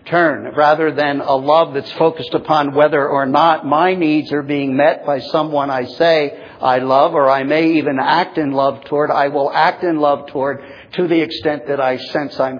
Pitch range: 135-180 Hz